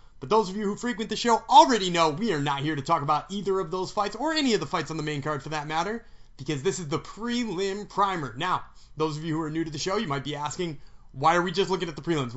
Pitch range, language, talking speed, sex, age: 155-205 Hz, English, 295 wpm, male, 30-49